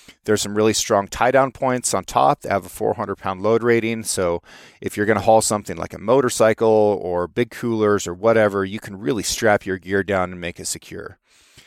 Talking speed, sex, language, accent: 205 wpm, male, English, American